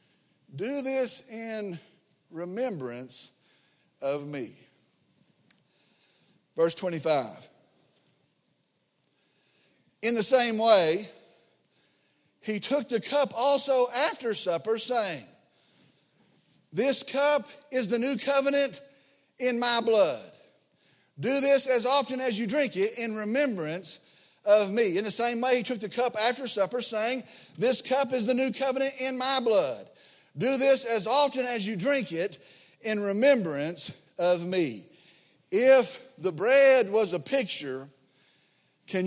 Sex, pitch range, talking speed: male, 185-260 Hz, 125 wpm